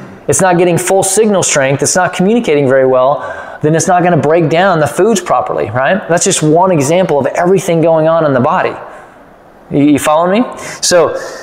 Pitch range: 125-170 Hz